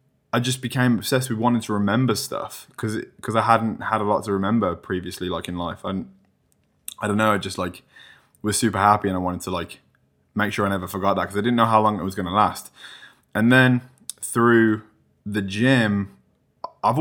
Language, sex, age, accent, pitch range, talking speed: English, male, 20-39, British, 95-115 Hz, 210 wpm